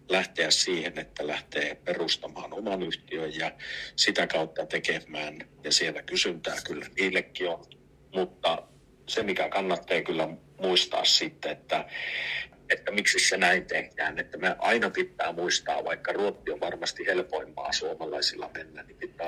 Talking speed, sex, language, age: 135 wpm, male, Finnish, 50-69